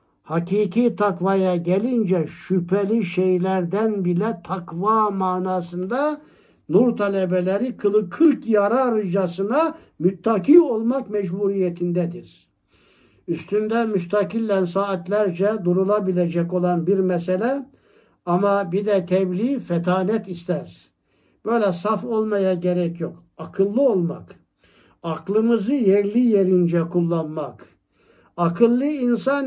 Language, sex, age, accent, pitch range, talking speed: Turkish, male, 60-79, native, 185-240 Hz, 85 wpm